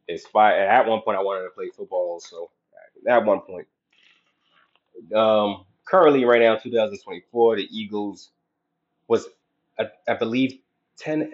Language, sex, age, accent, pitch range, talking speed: English, male, 20-39, American, 115-190 Hz, 140 wpm